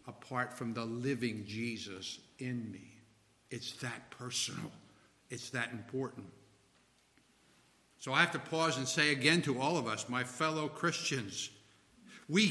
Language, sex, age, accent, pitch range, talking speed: English, male, 60-79, American, 115-180 Hz, 140 wpm